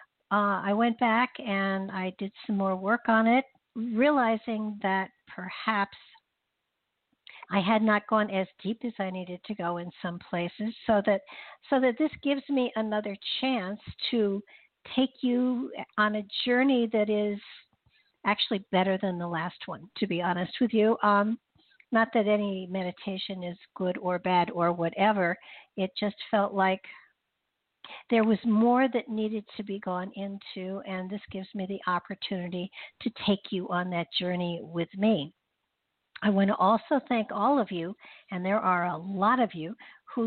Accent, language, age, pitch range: American, English, 60-79, 185-225 Hz